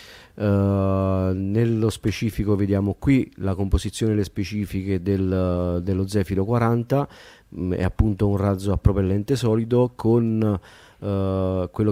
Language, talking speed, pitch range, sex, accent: Italian, 125 wpm, 90-110 Hz, male, native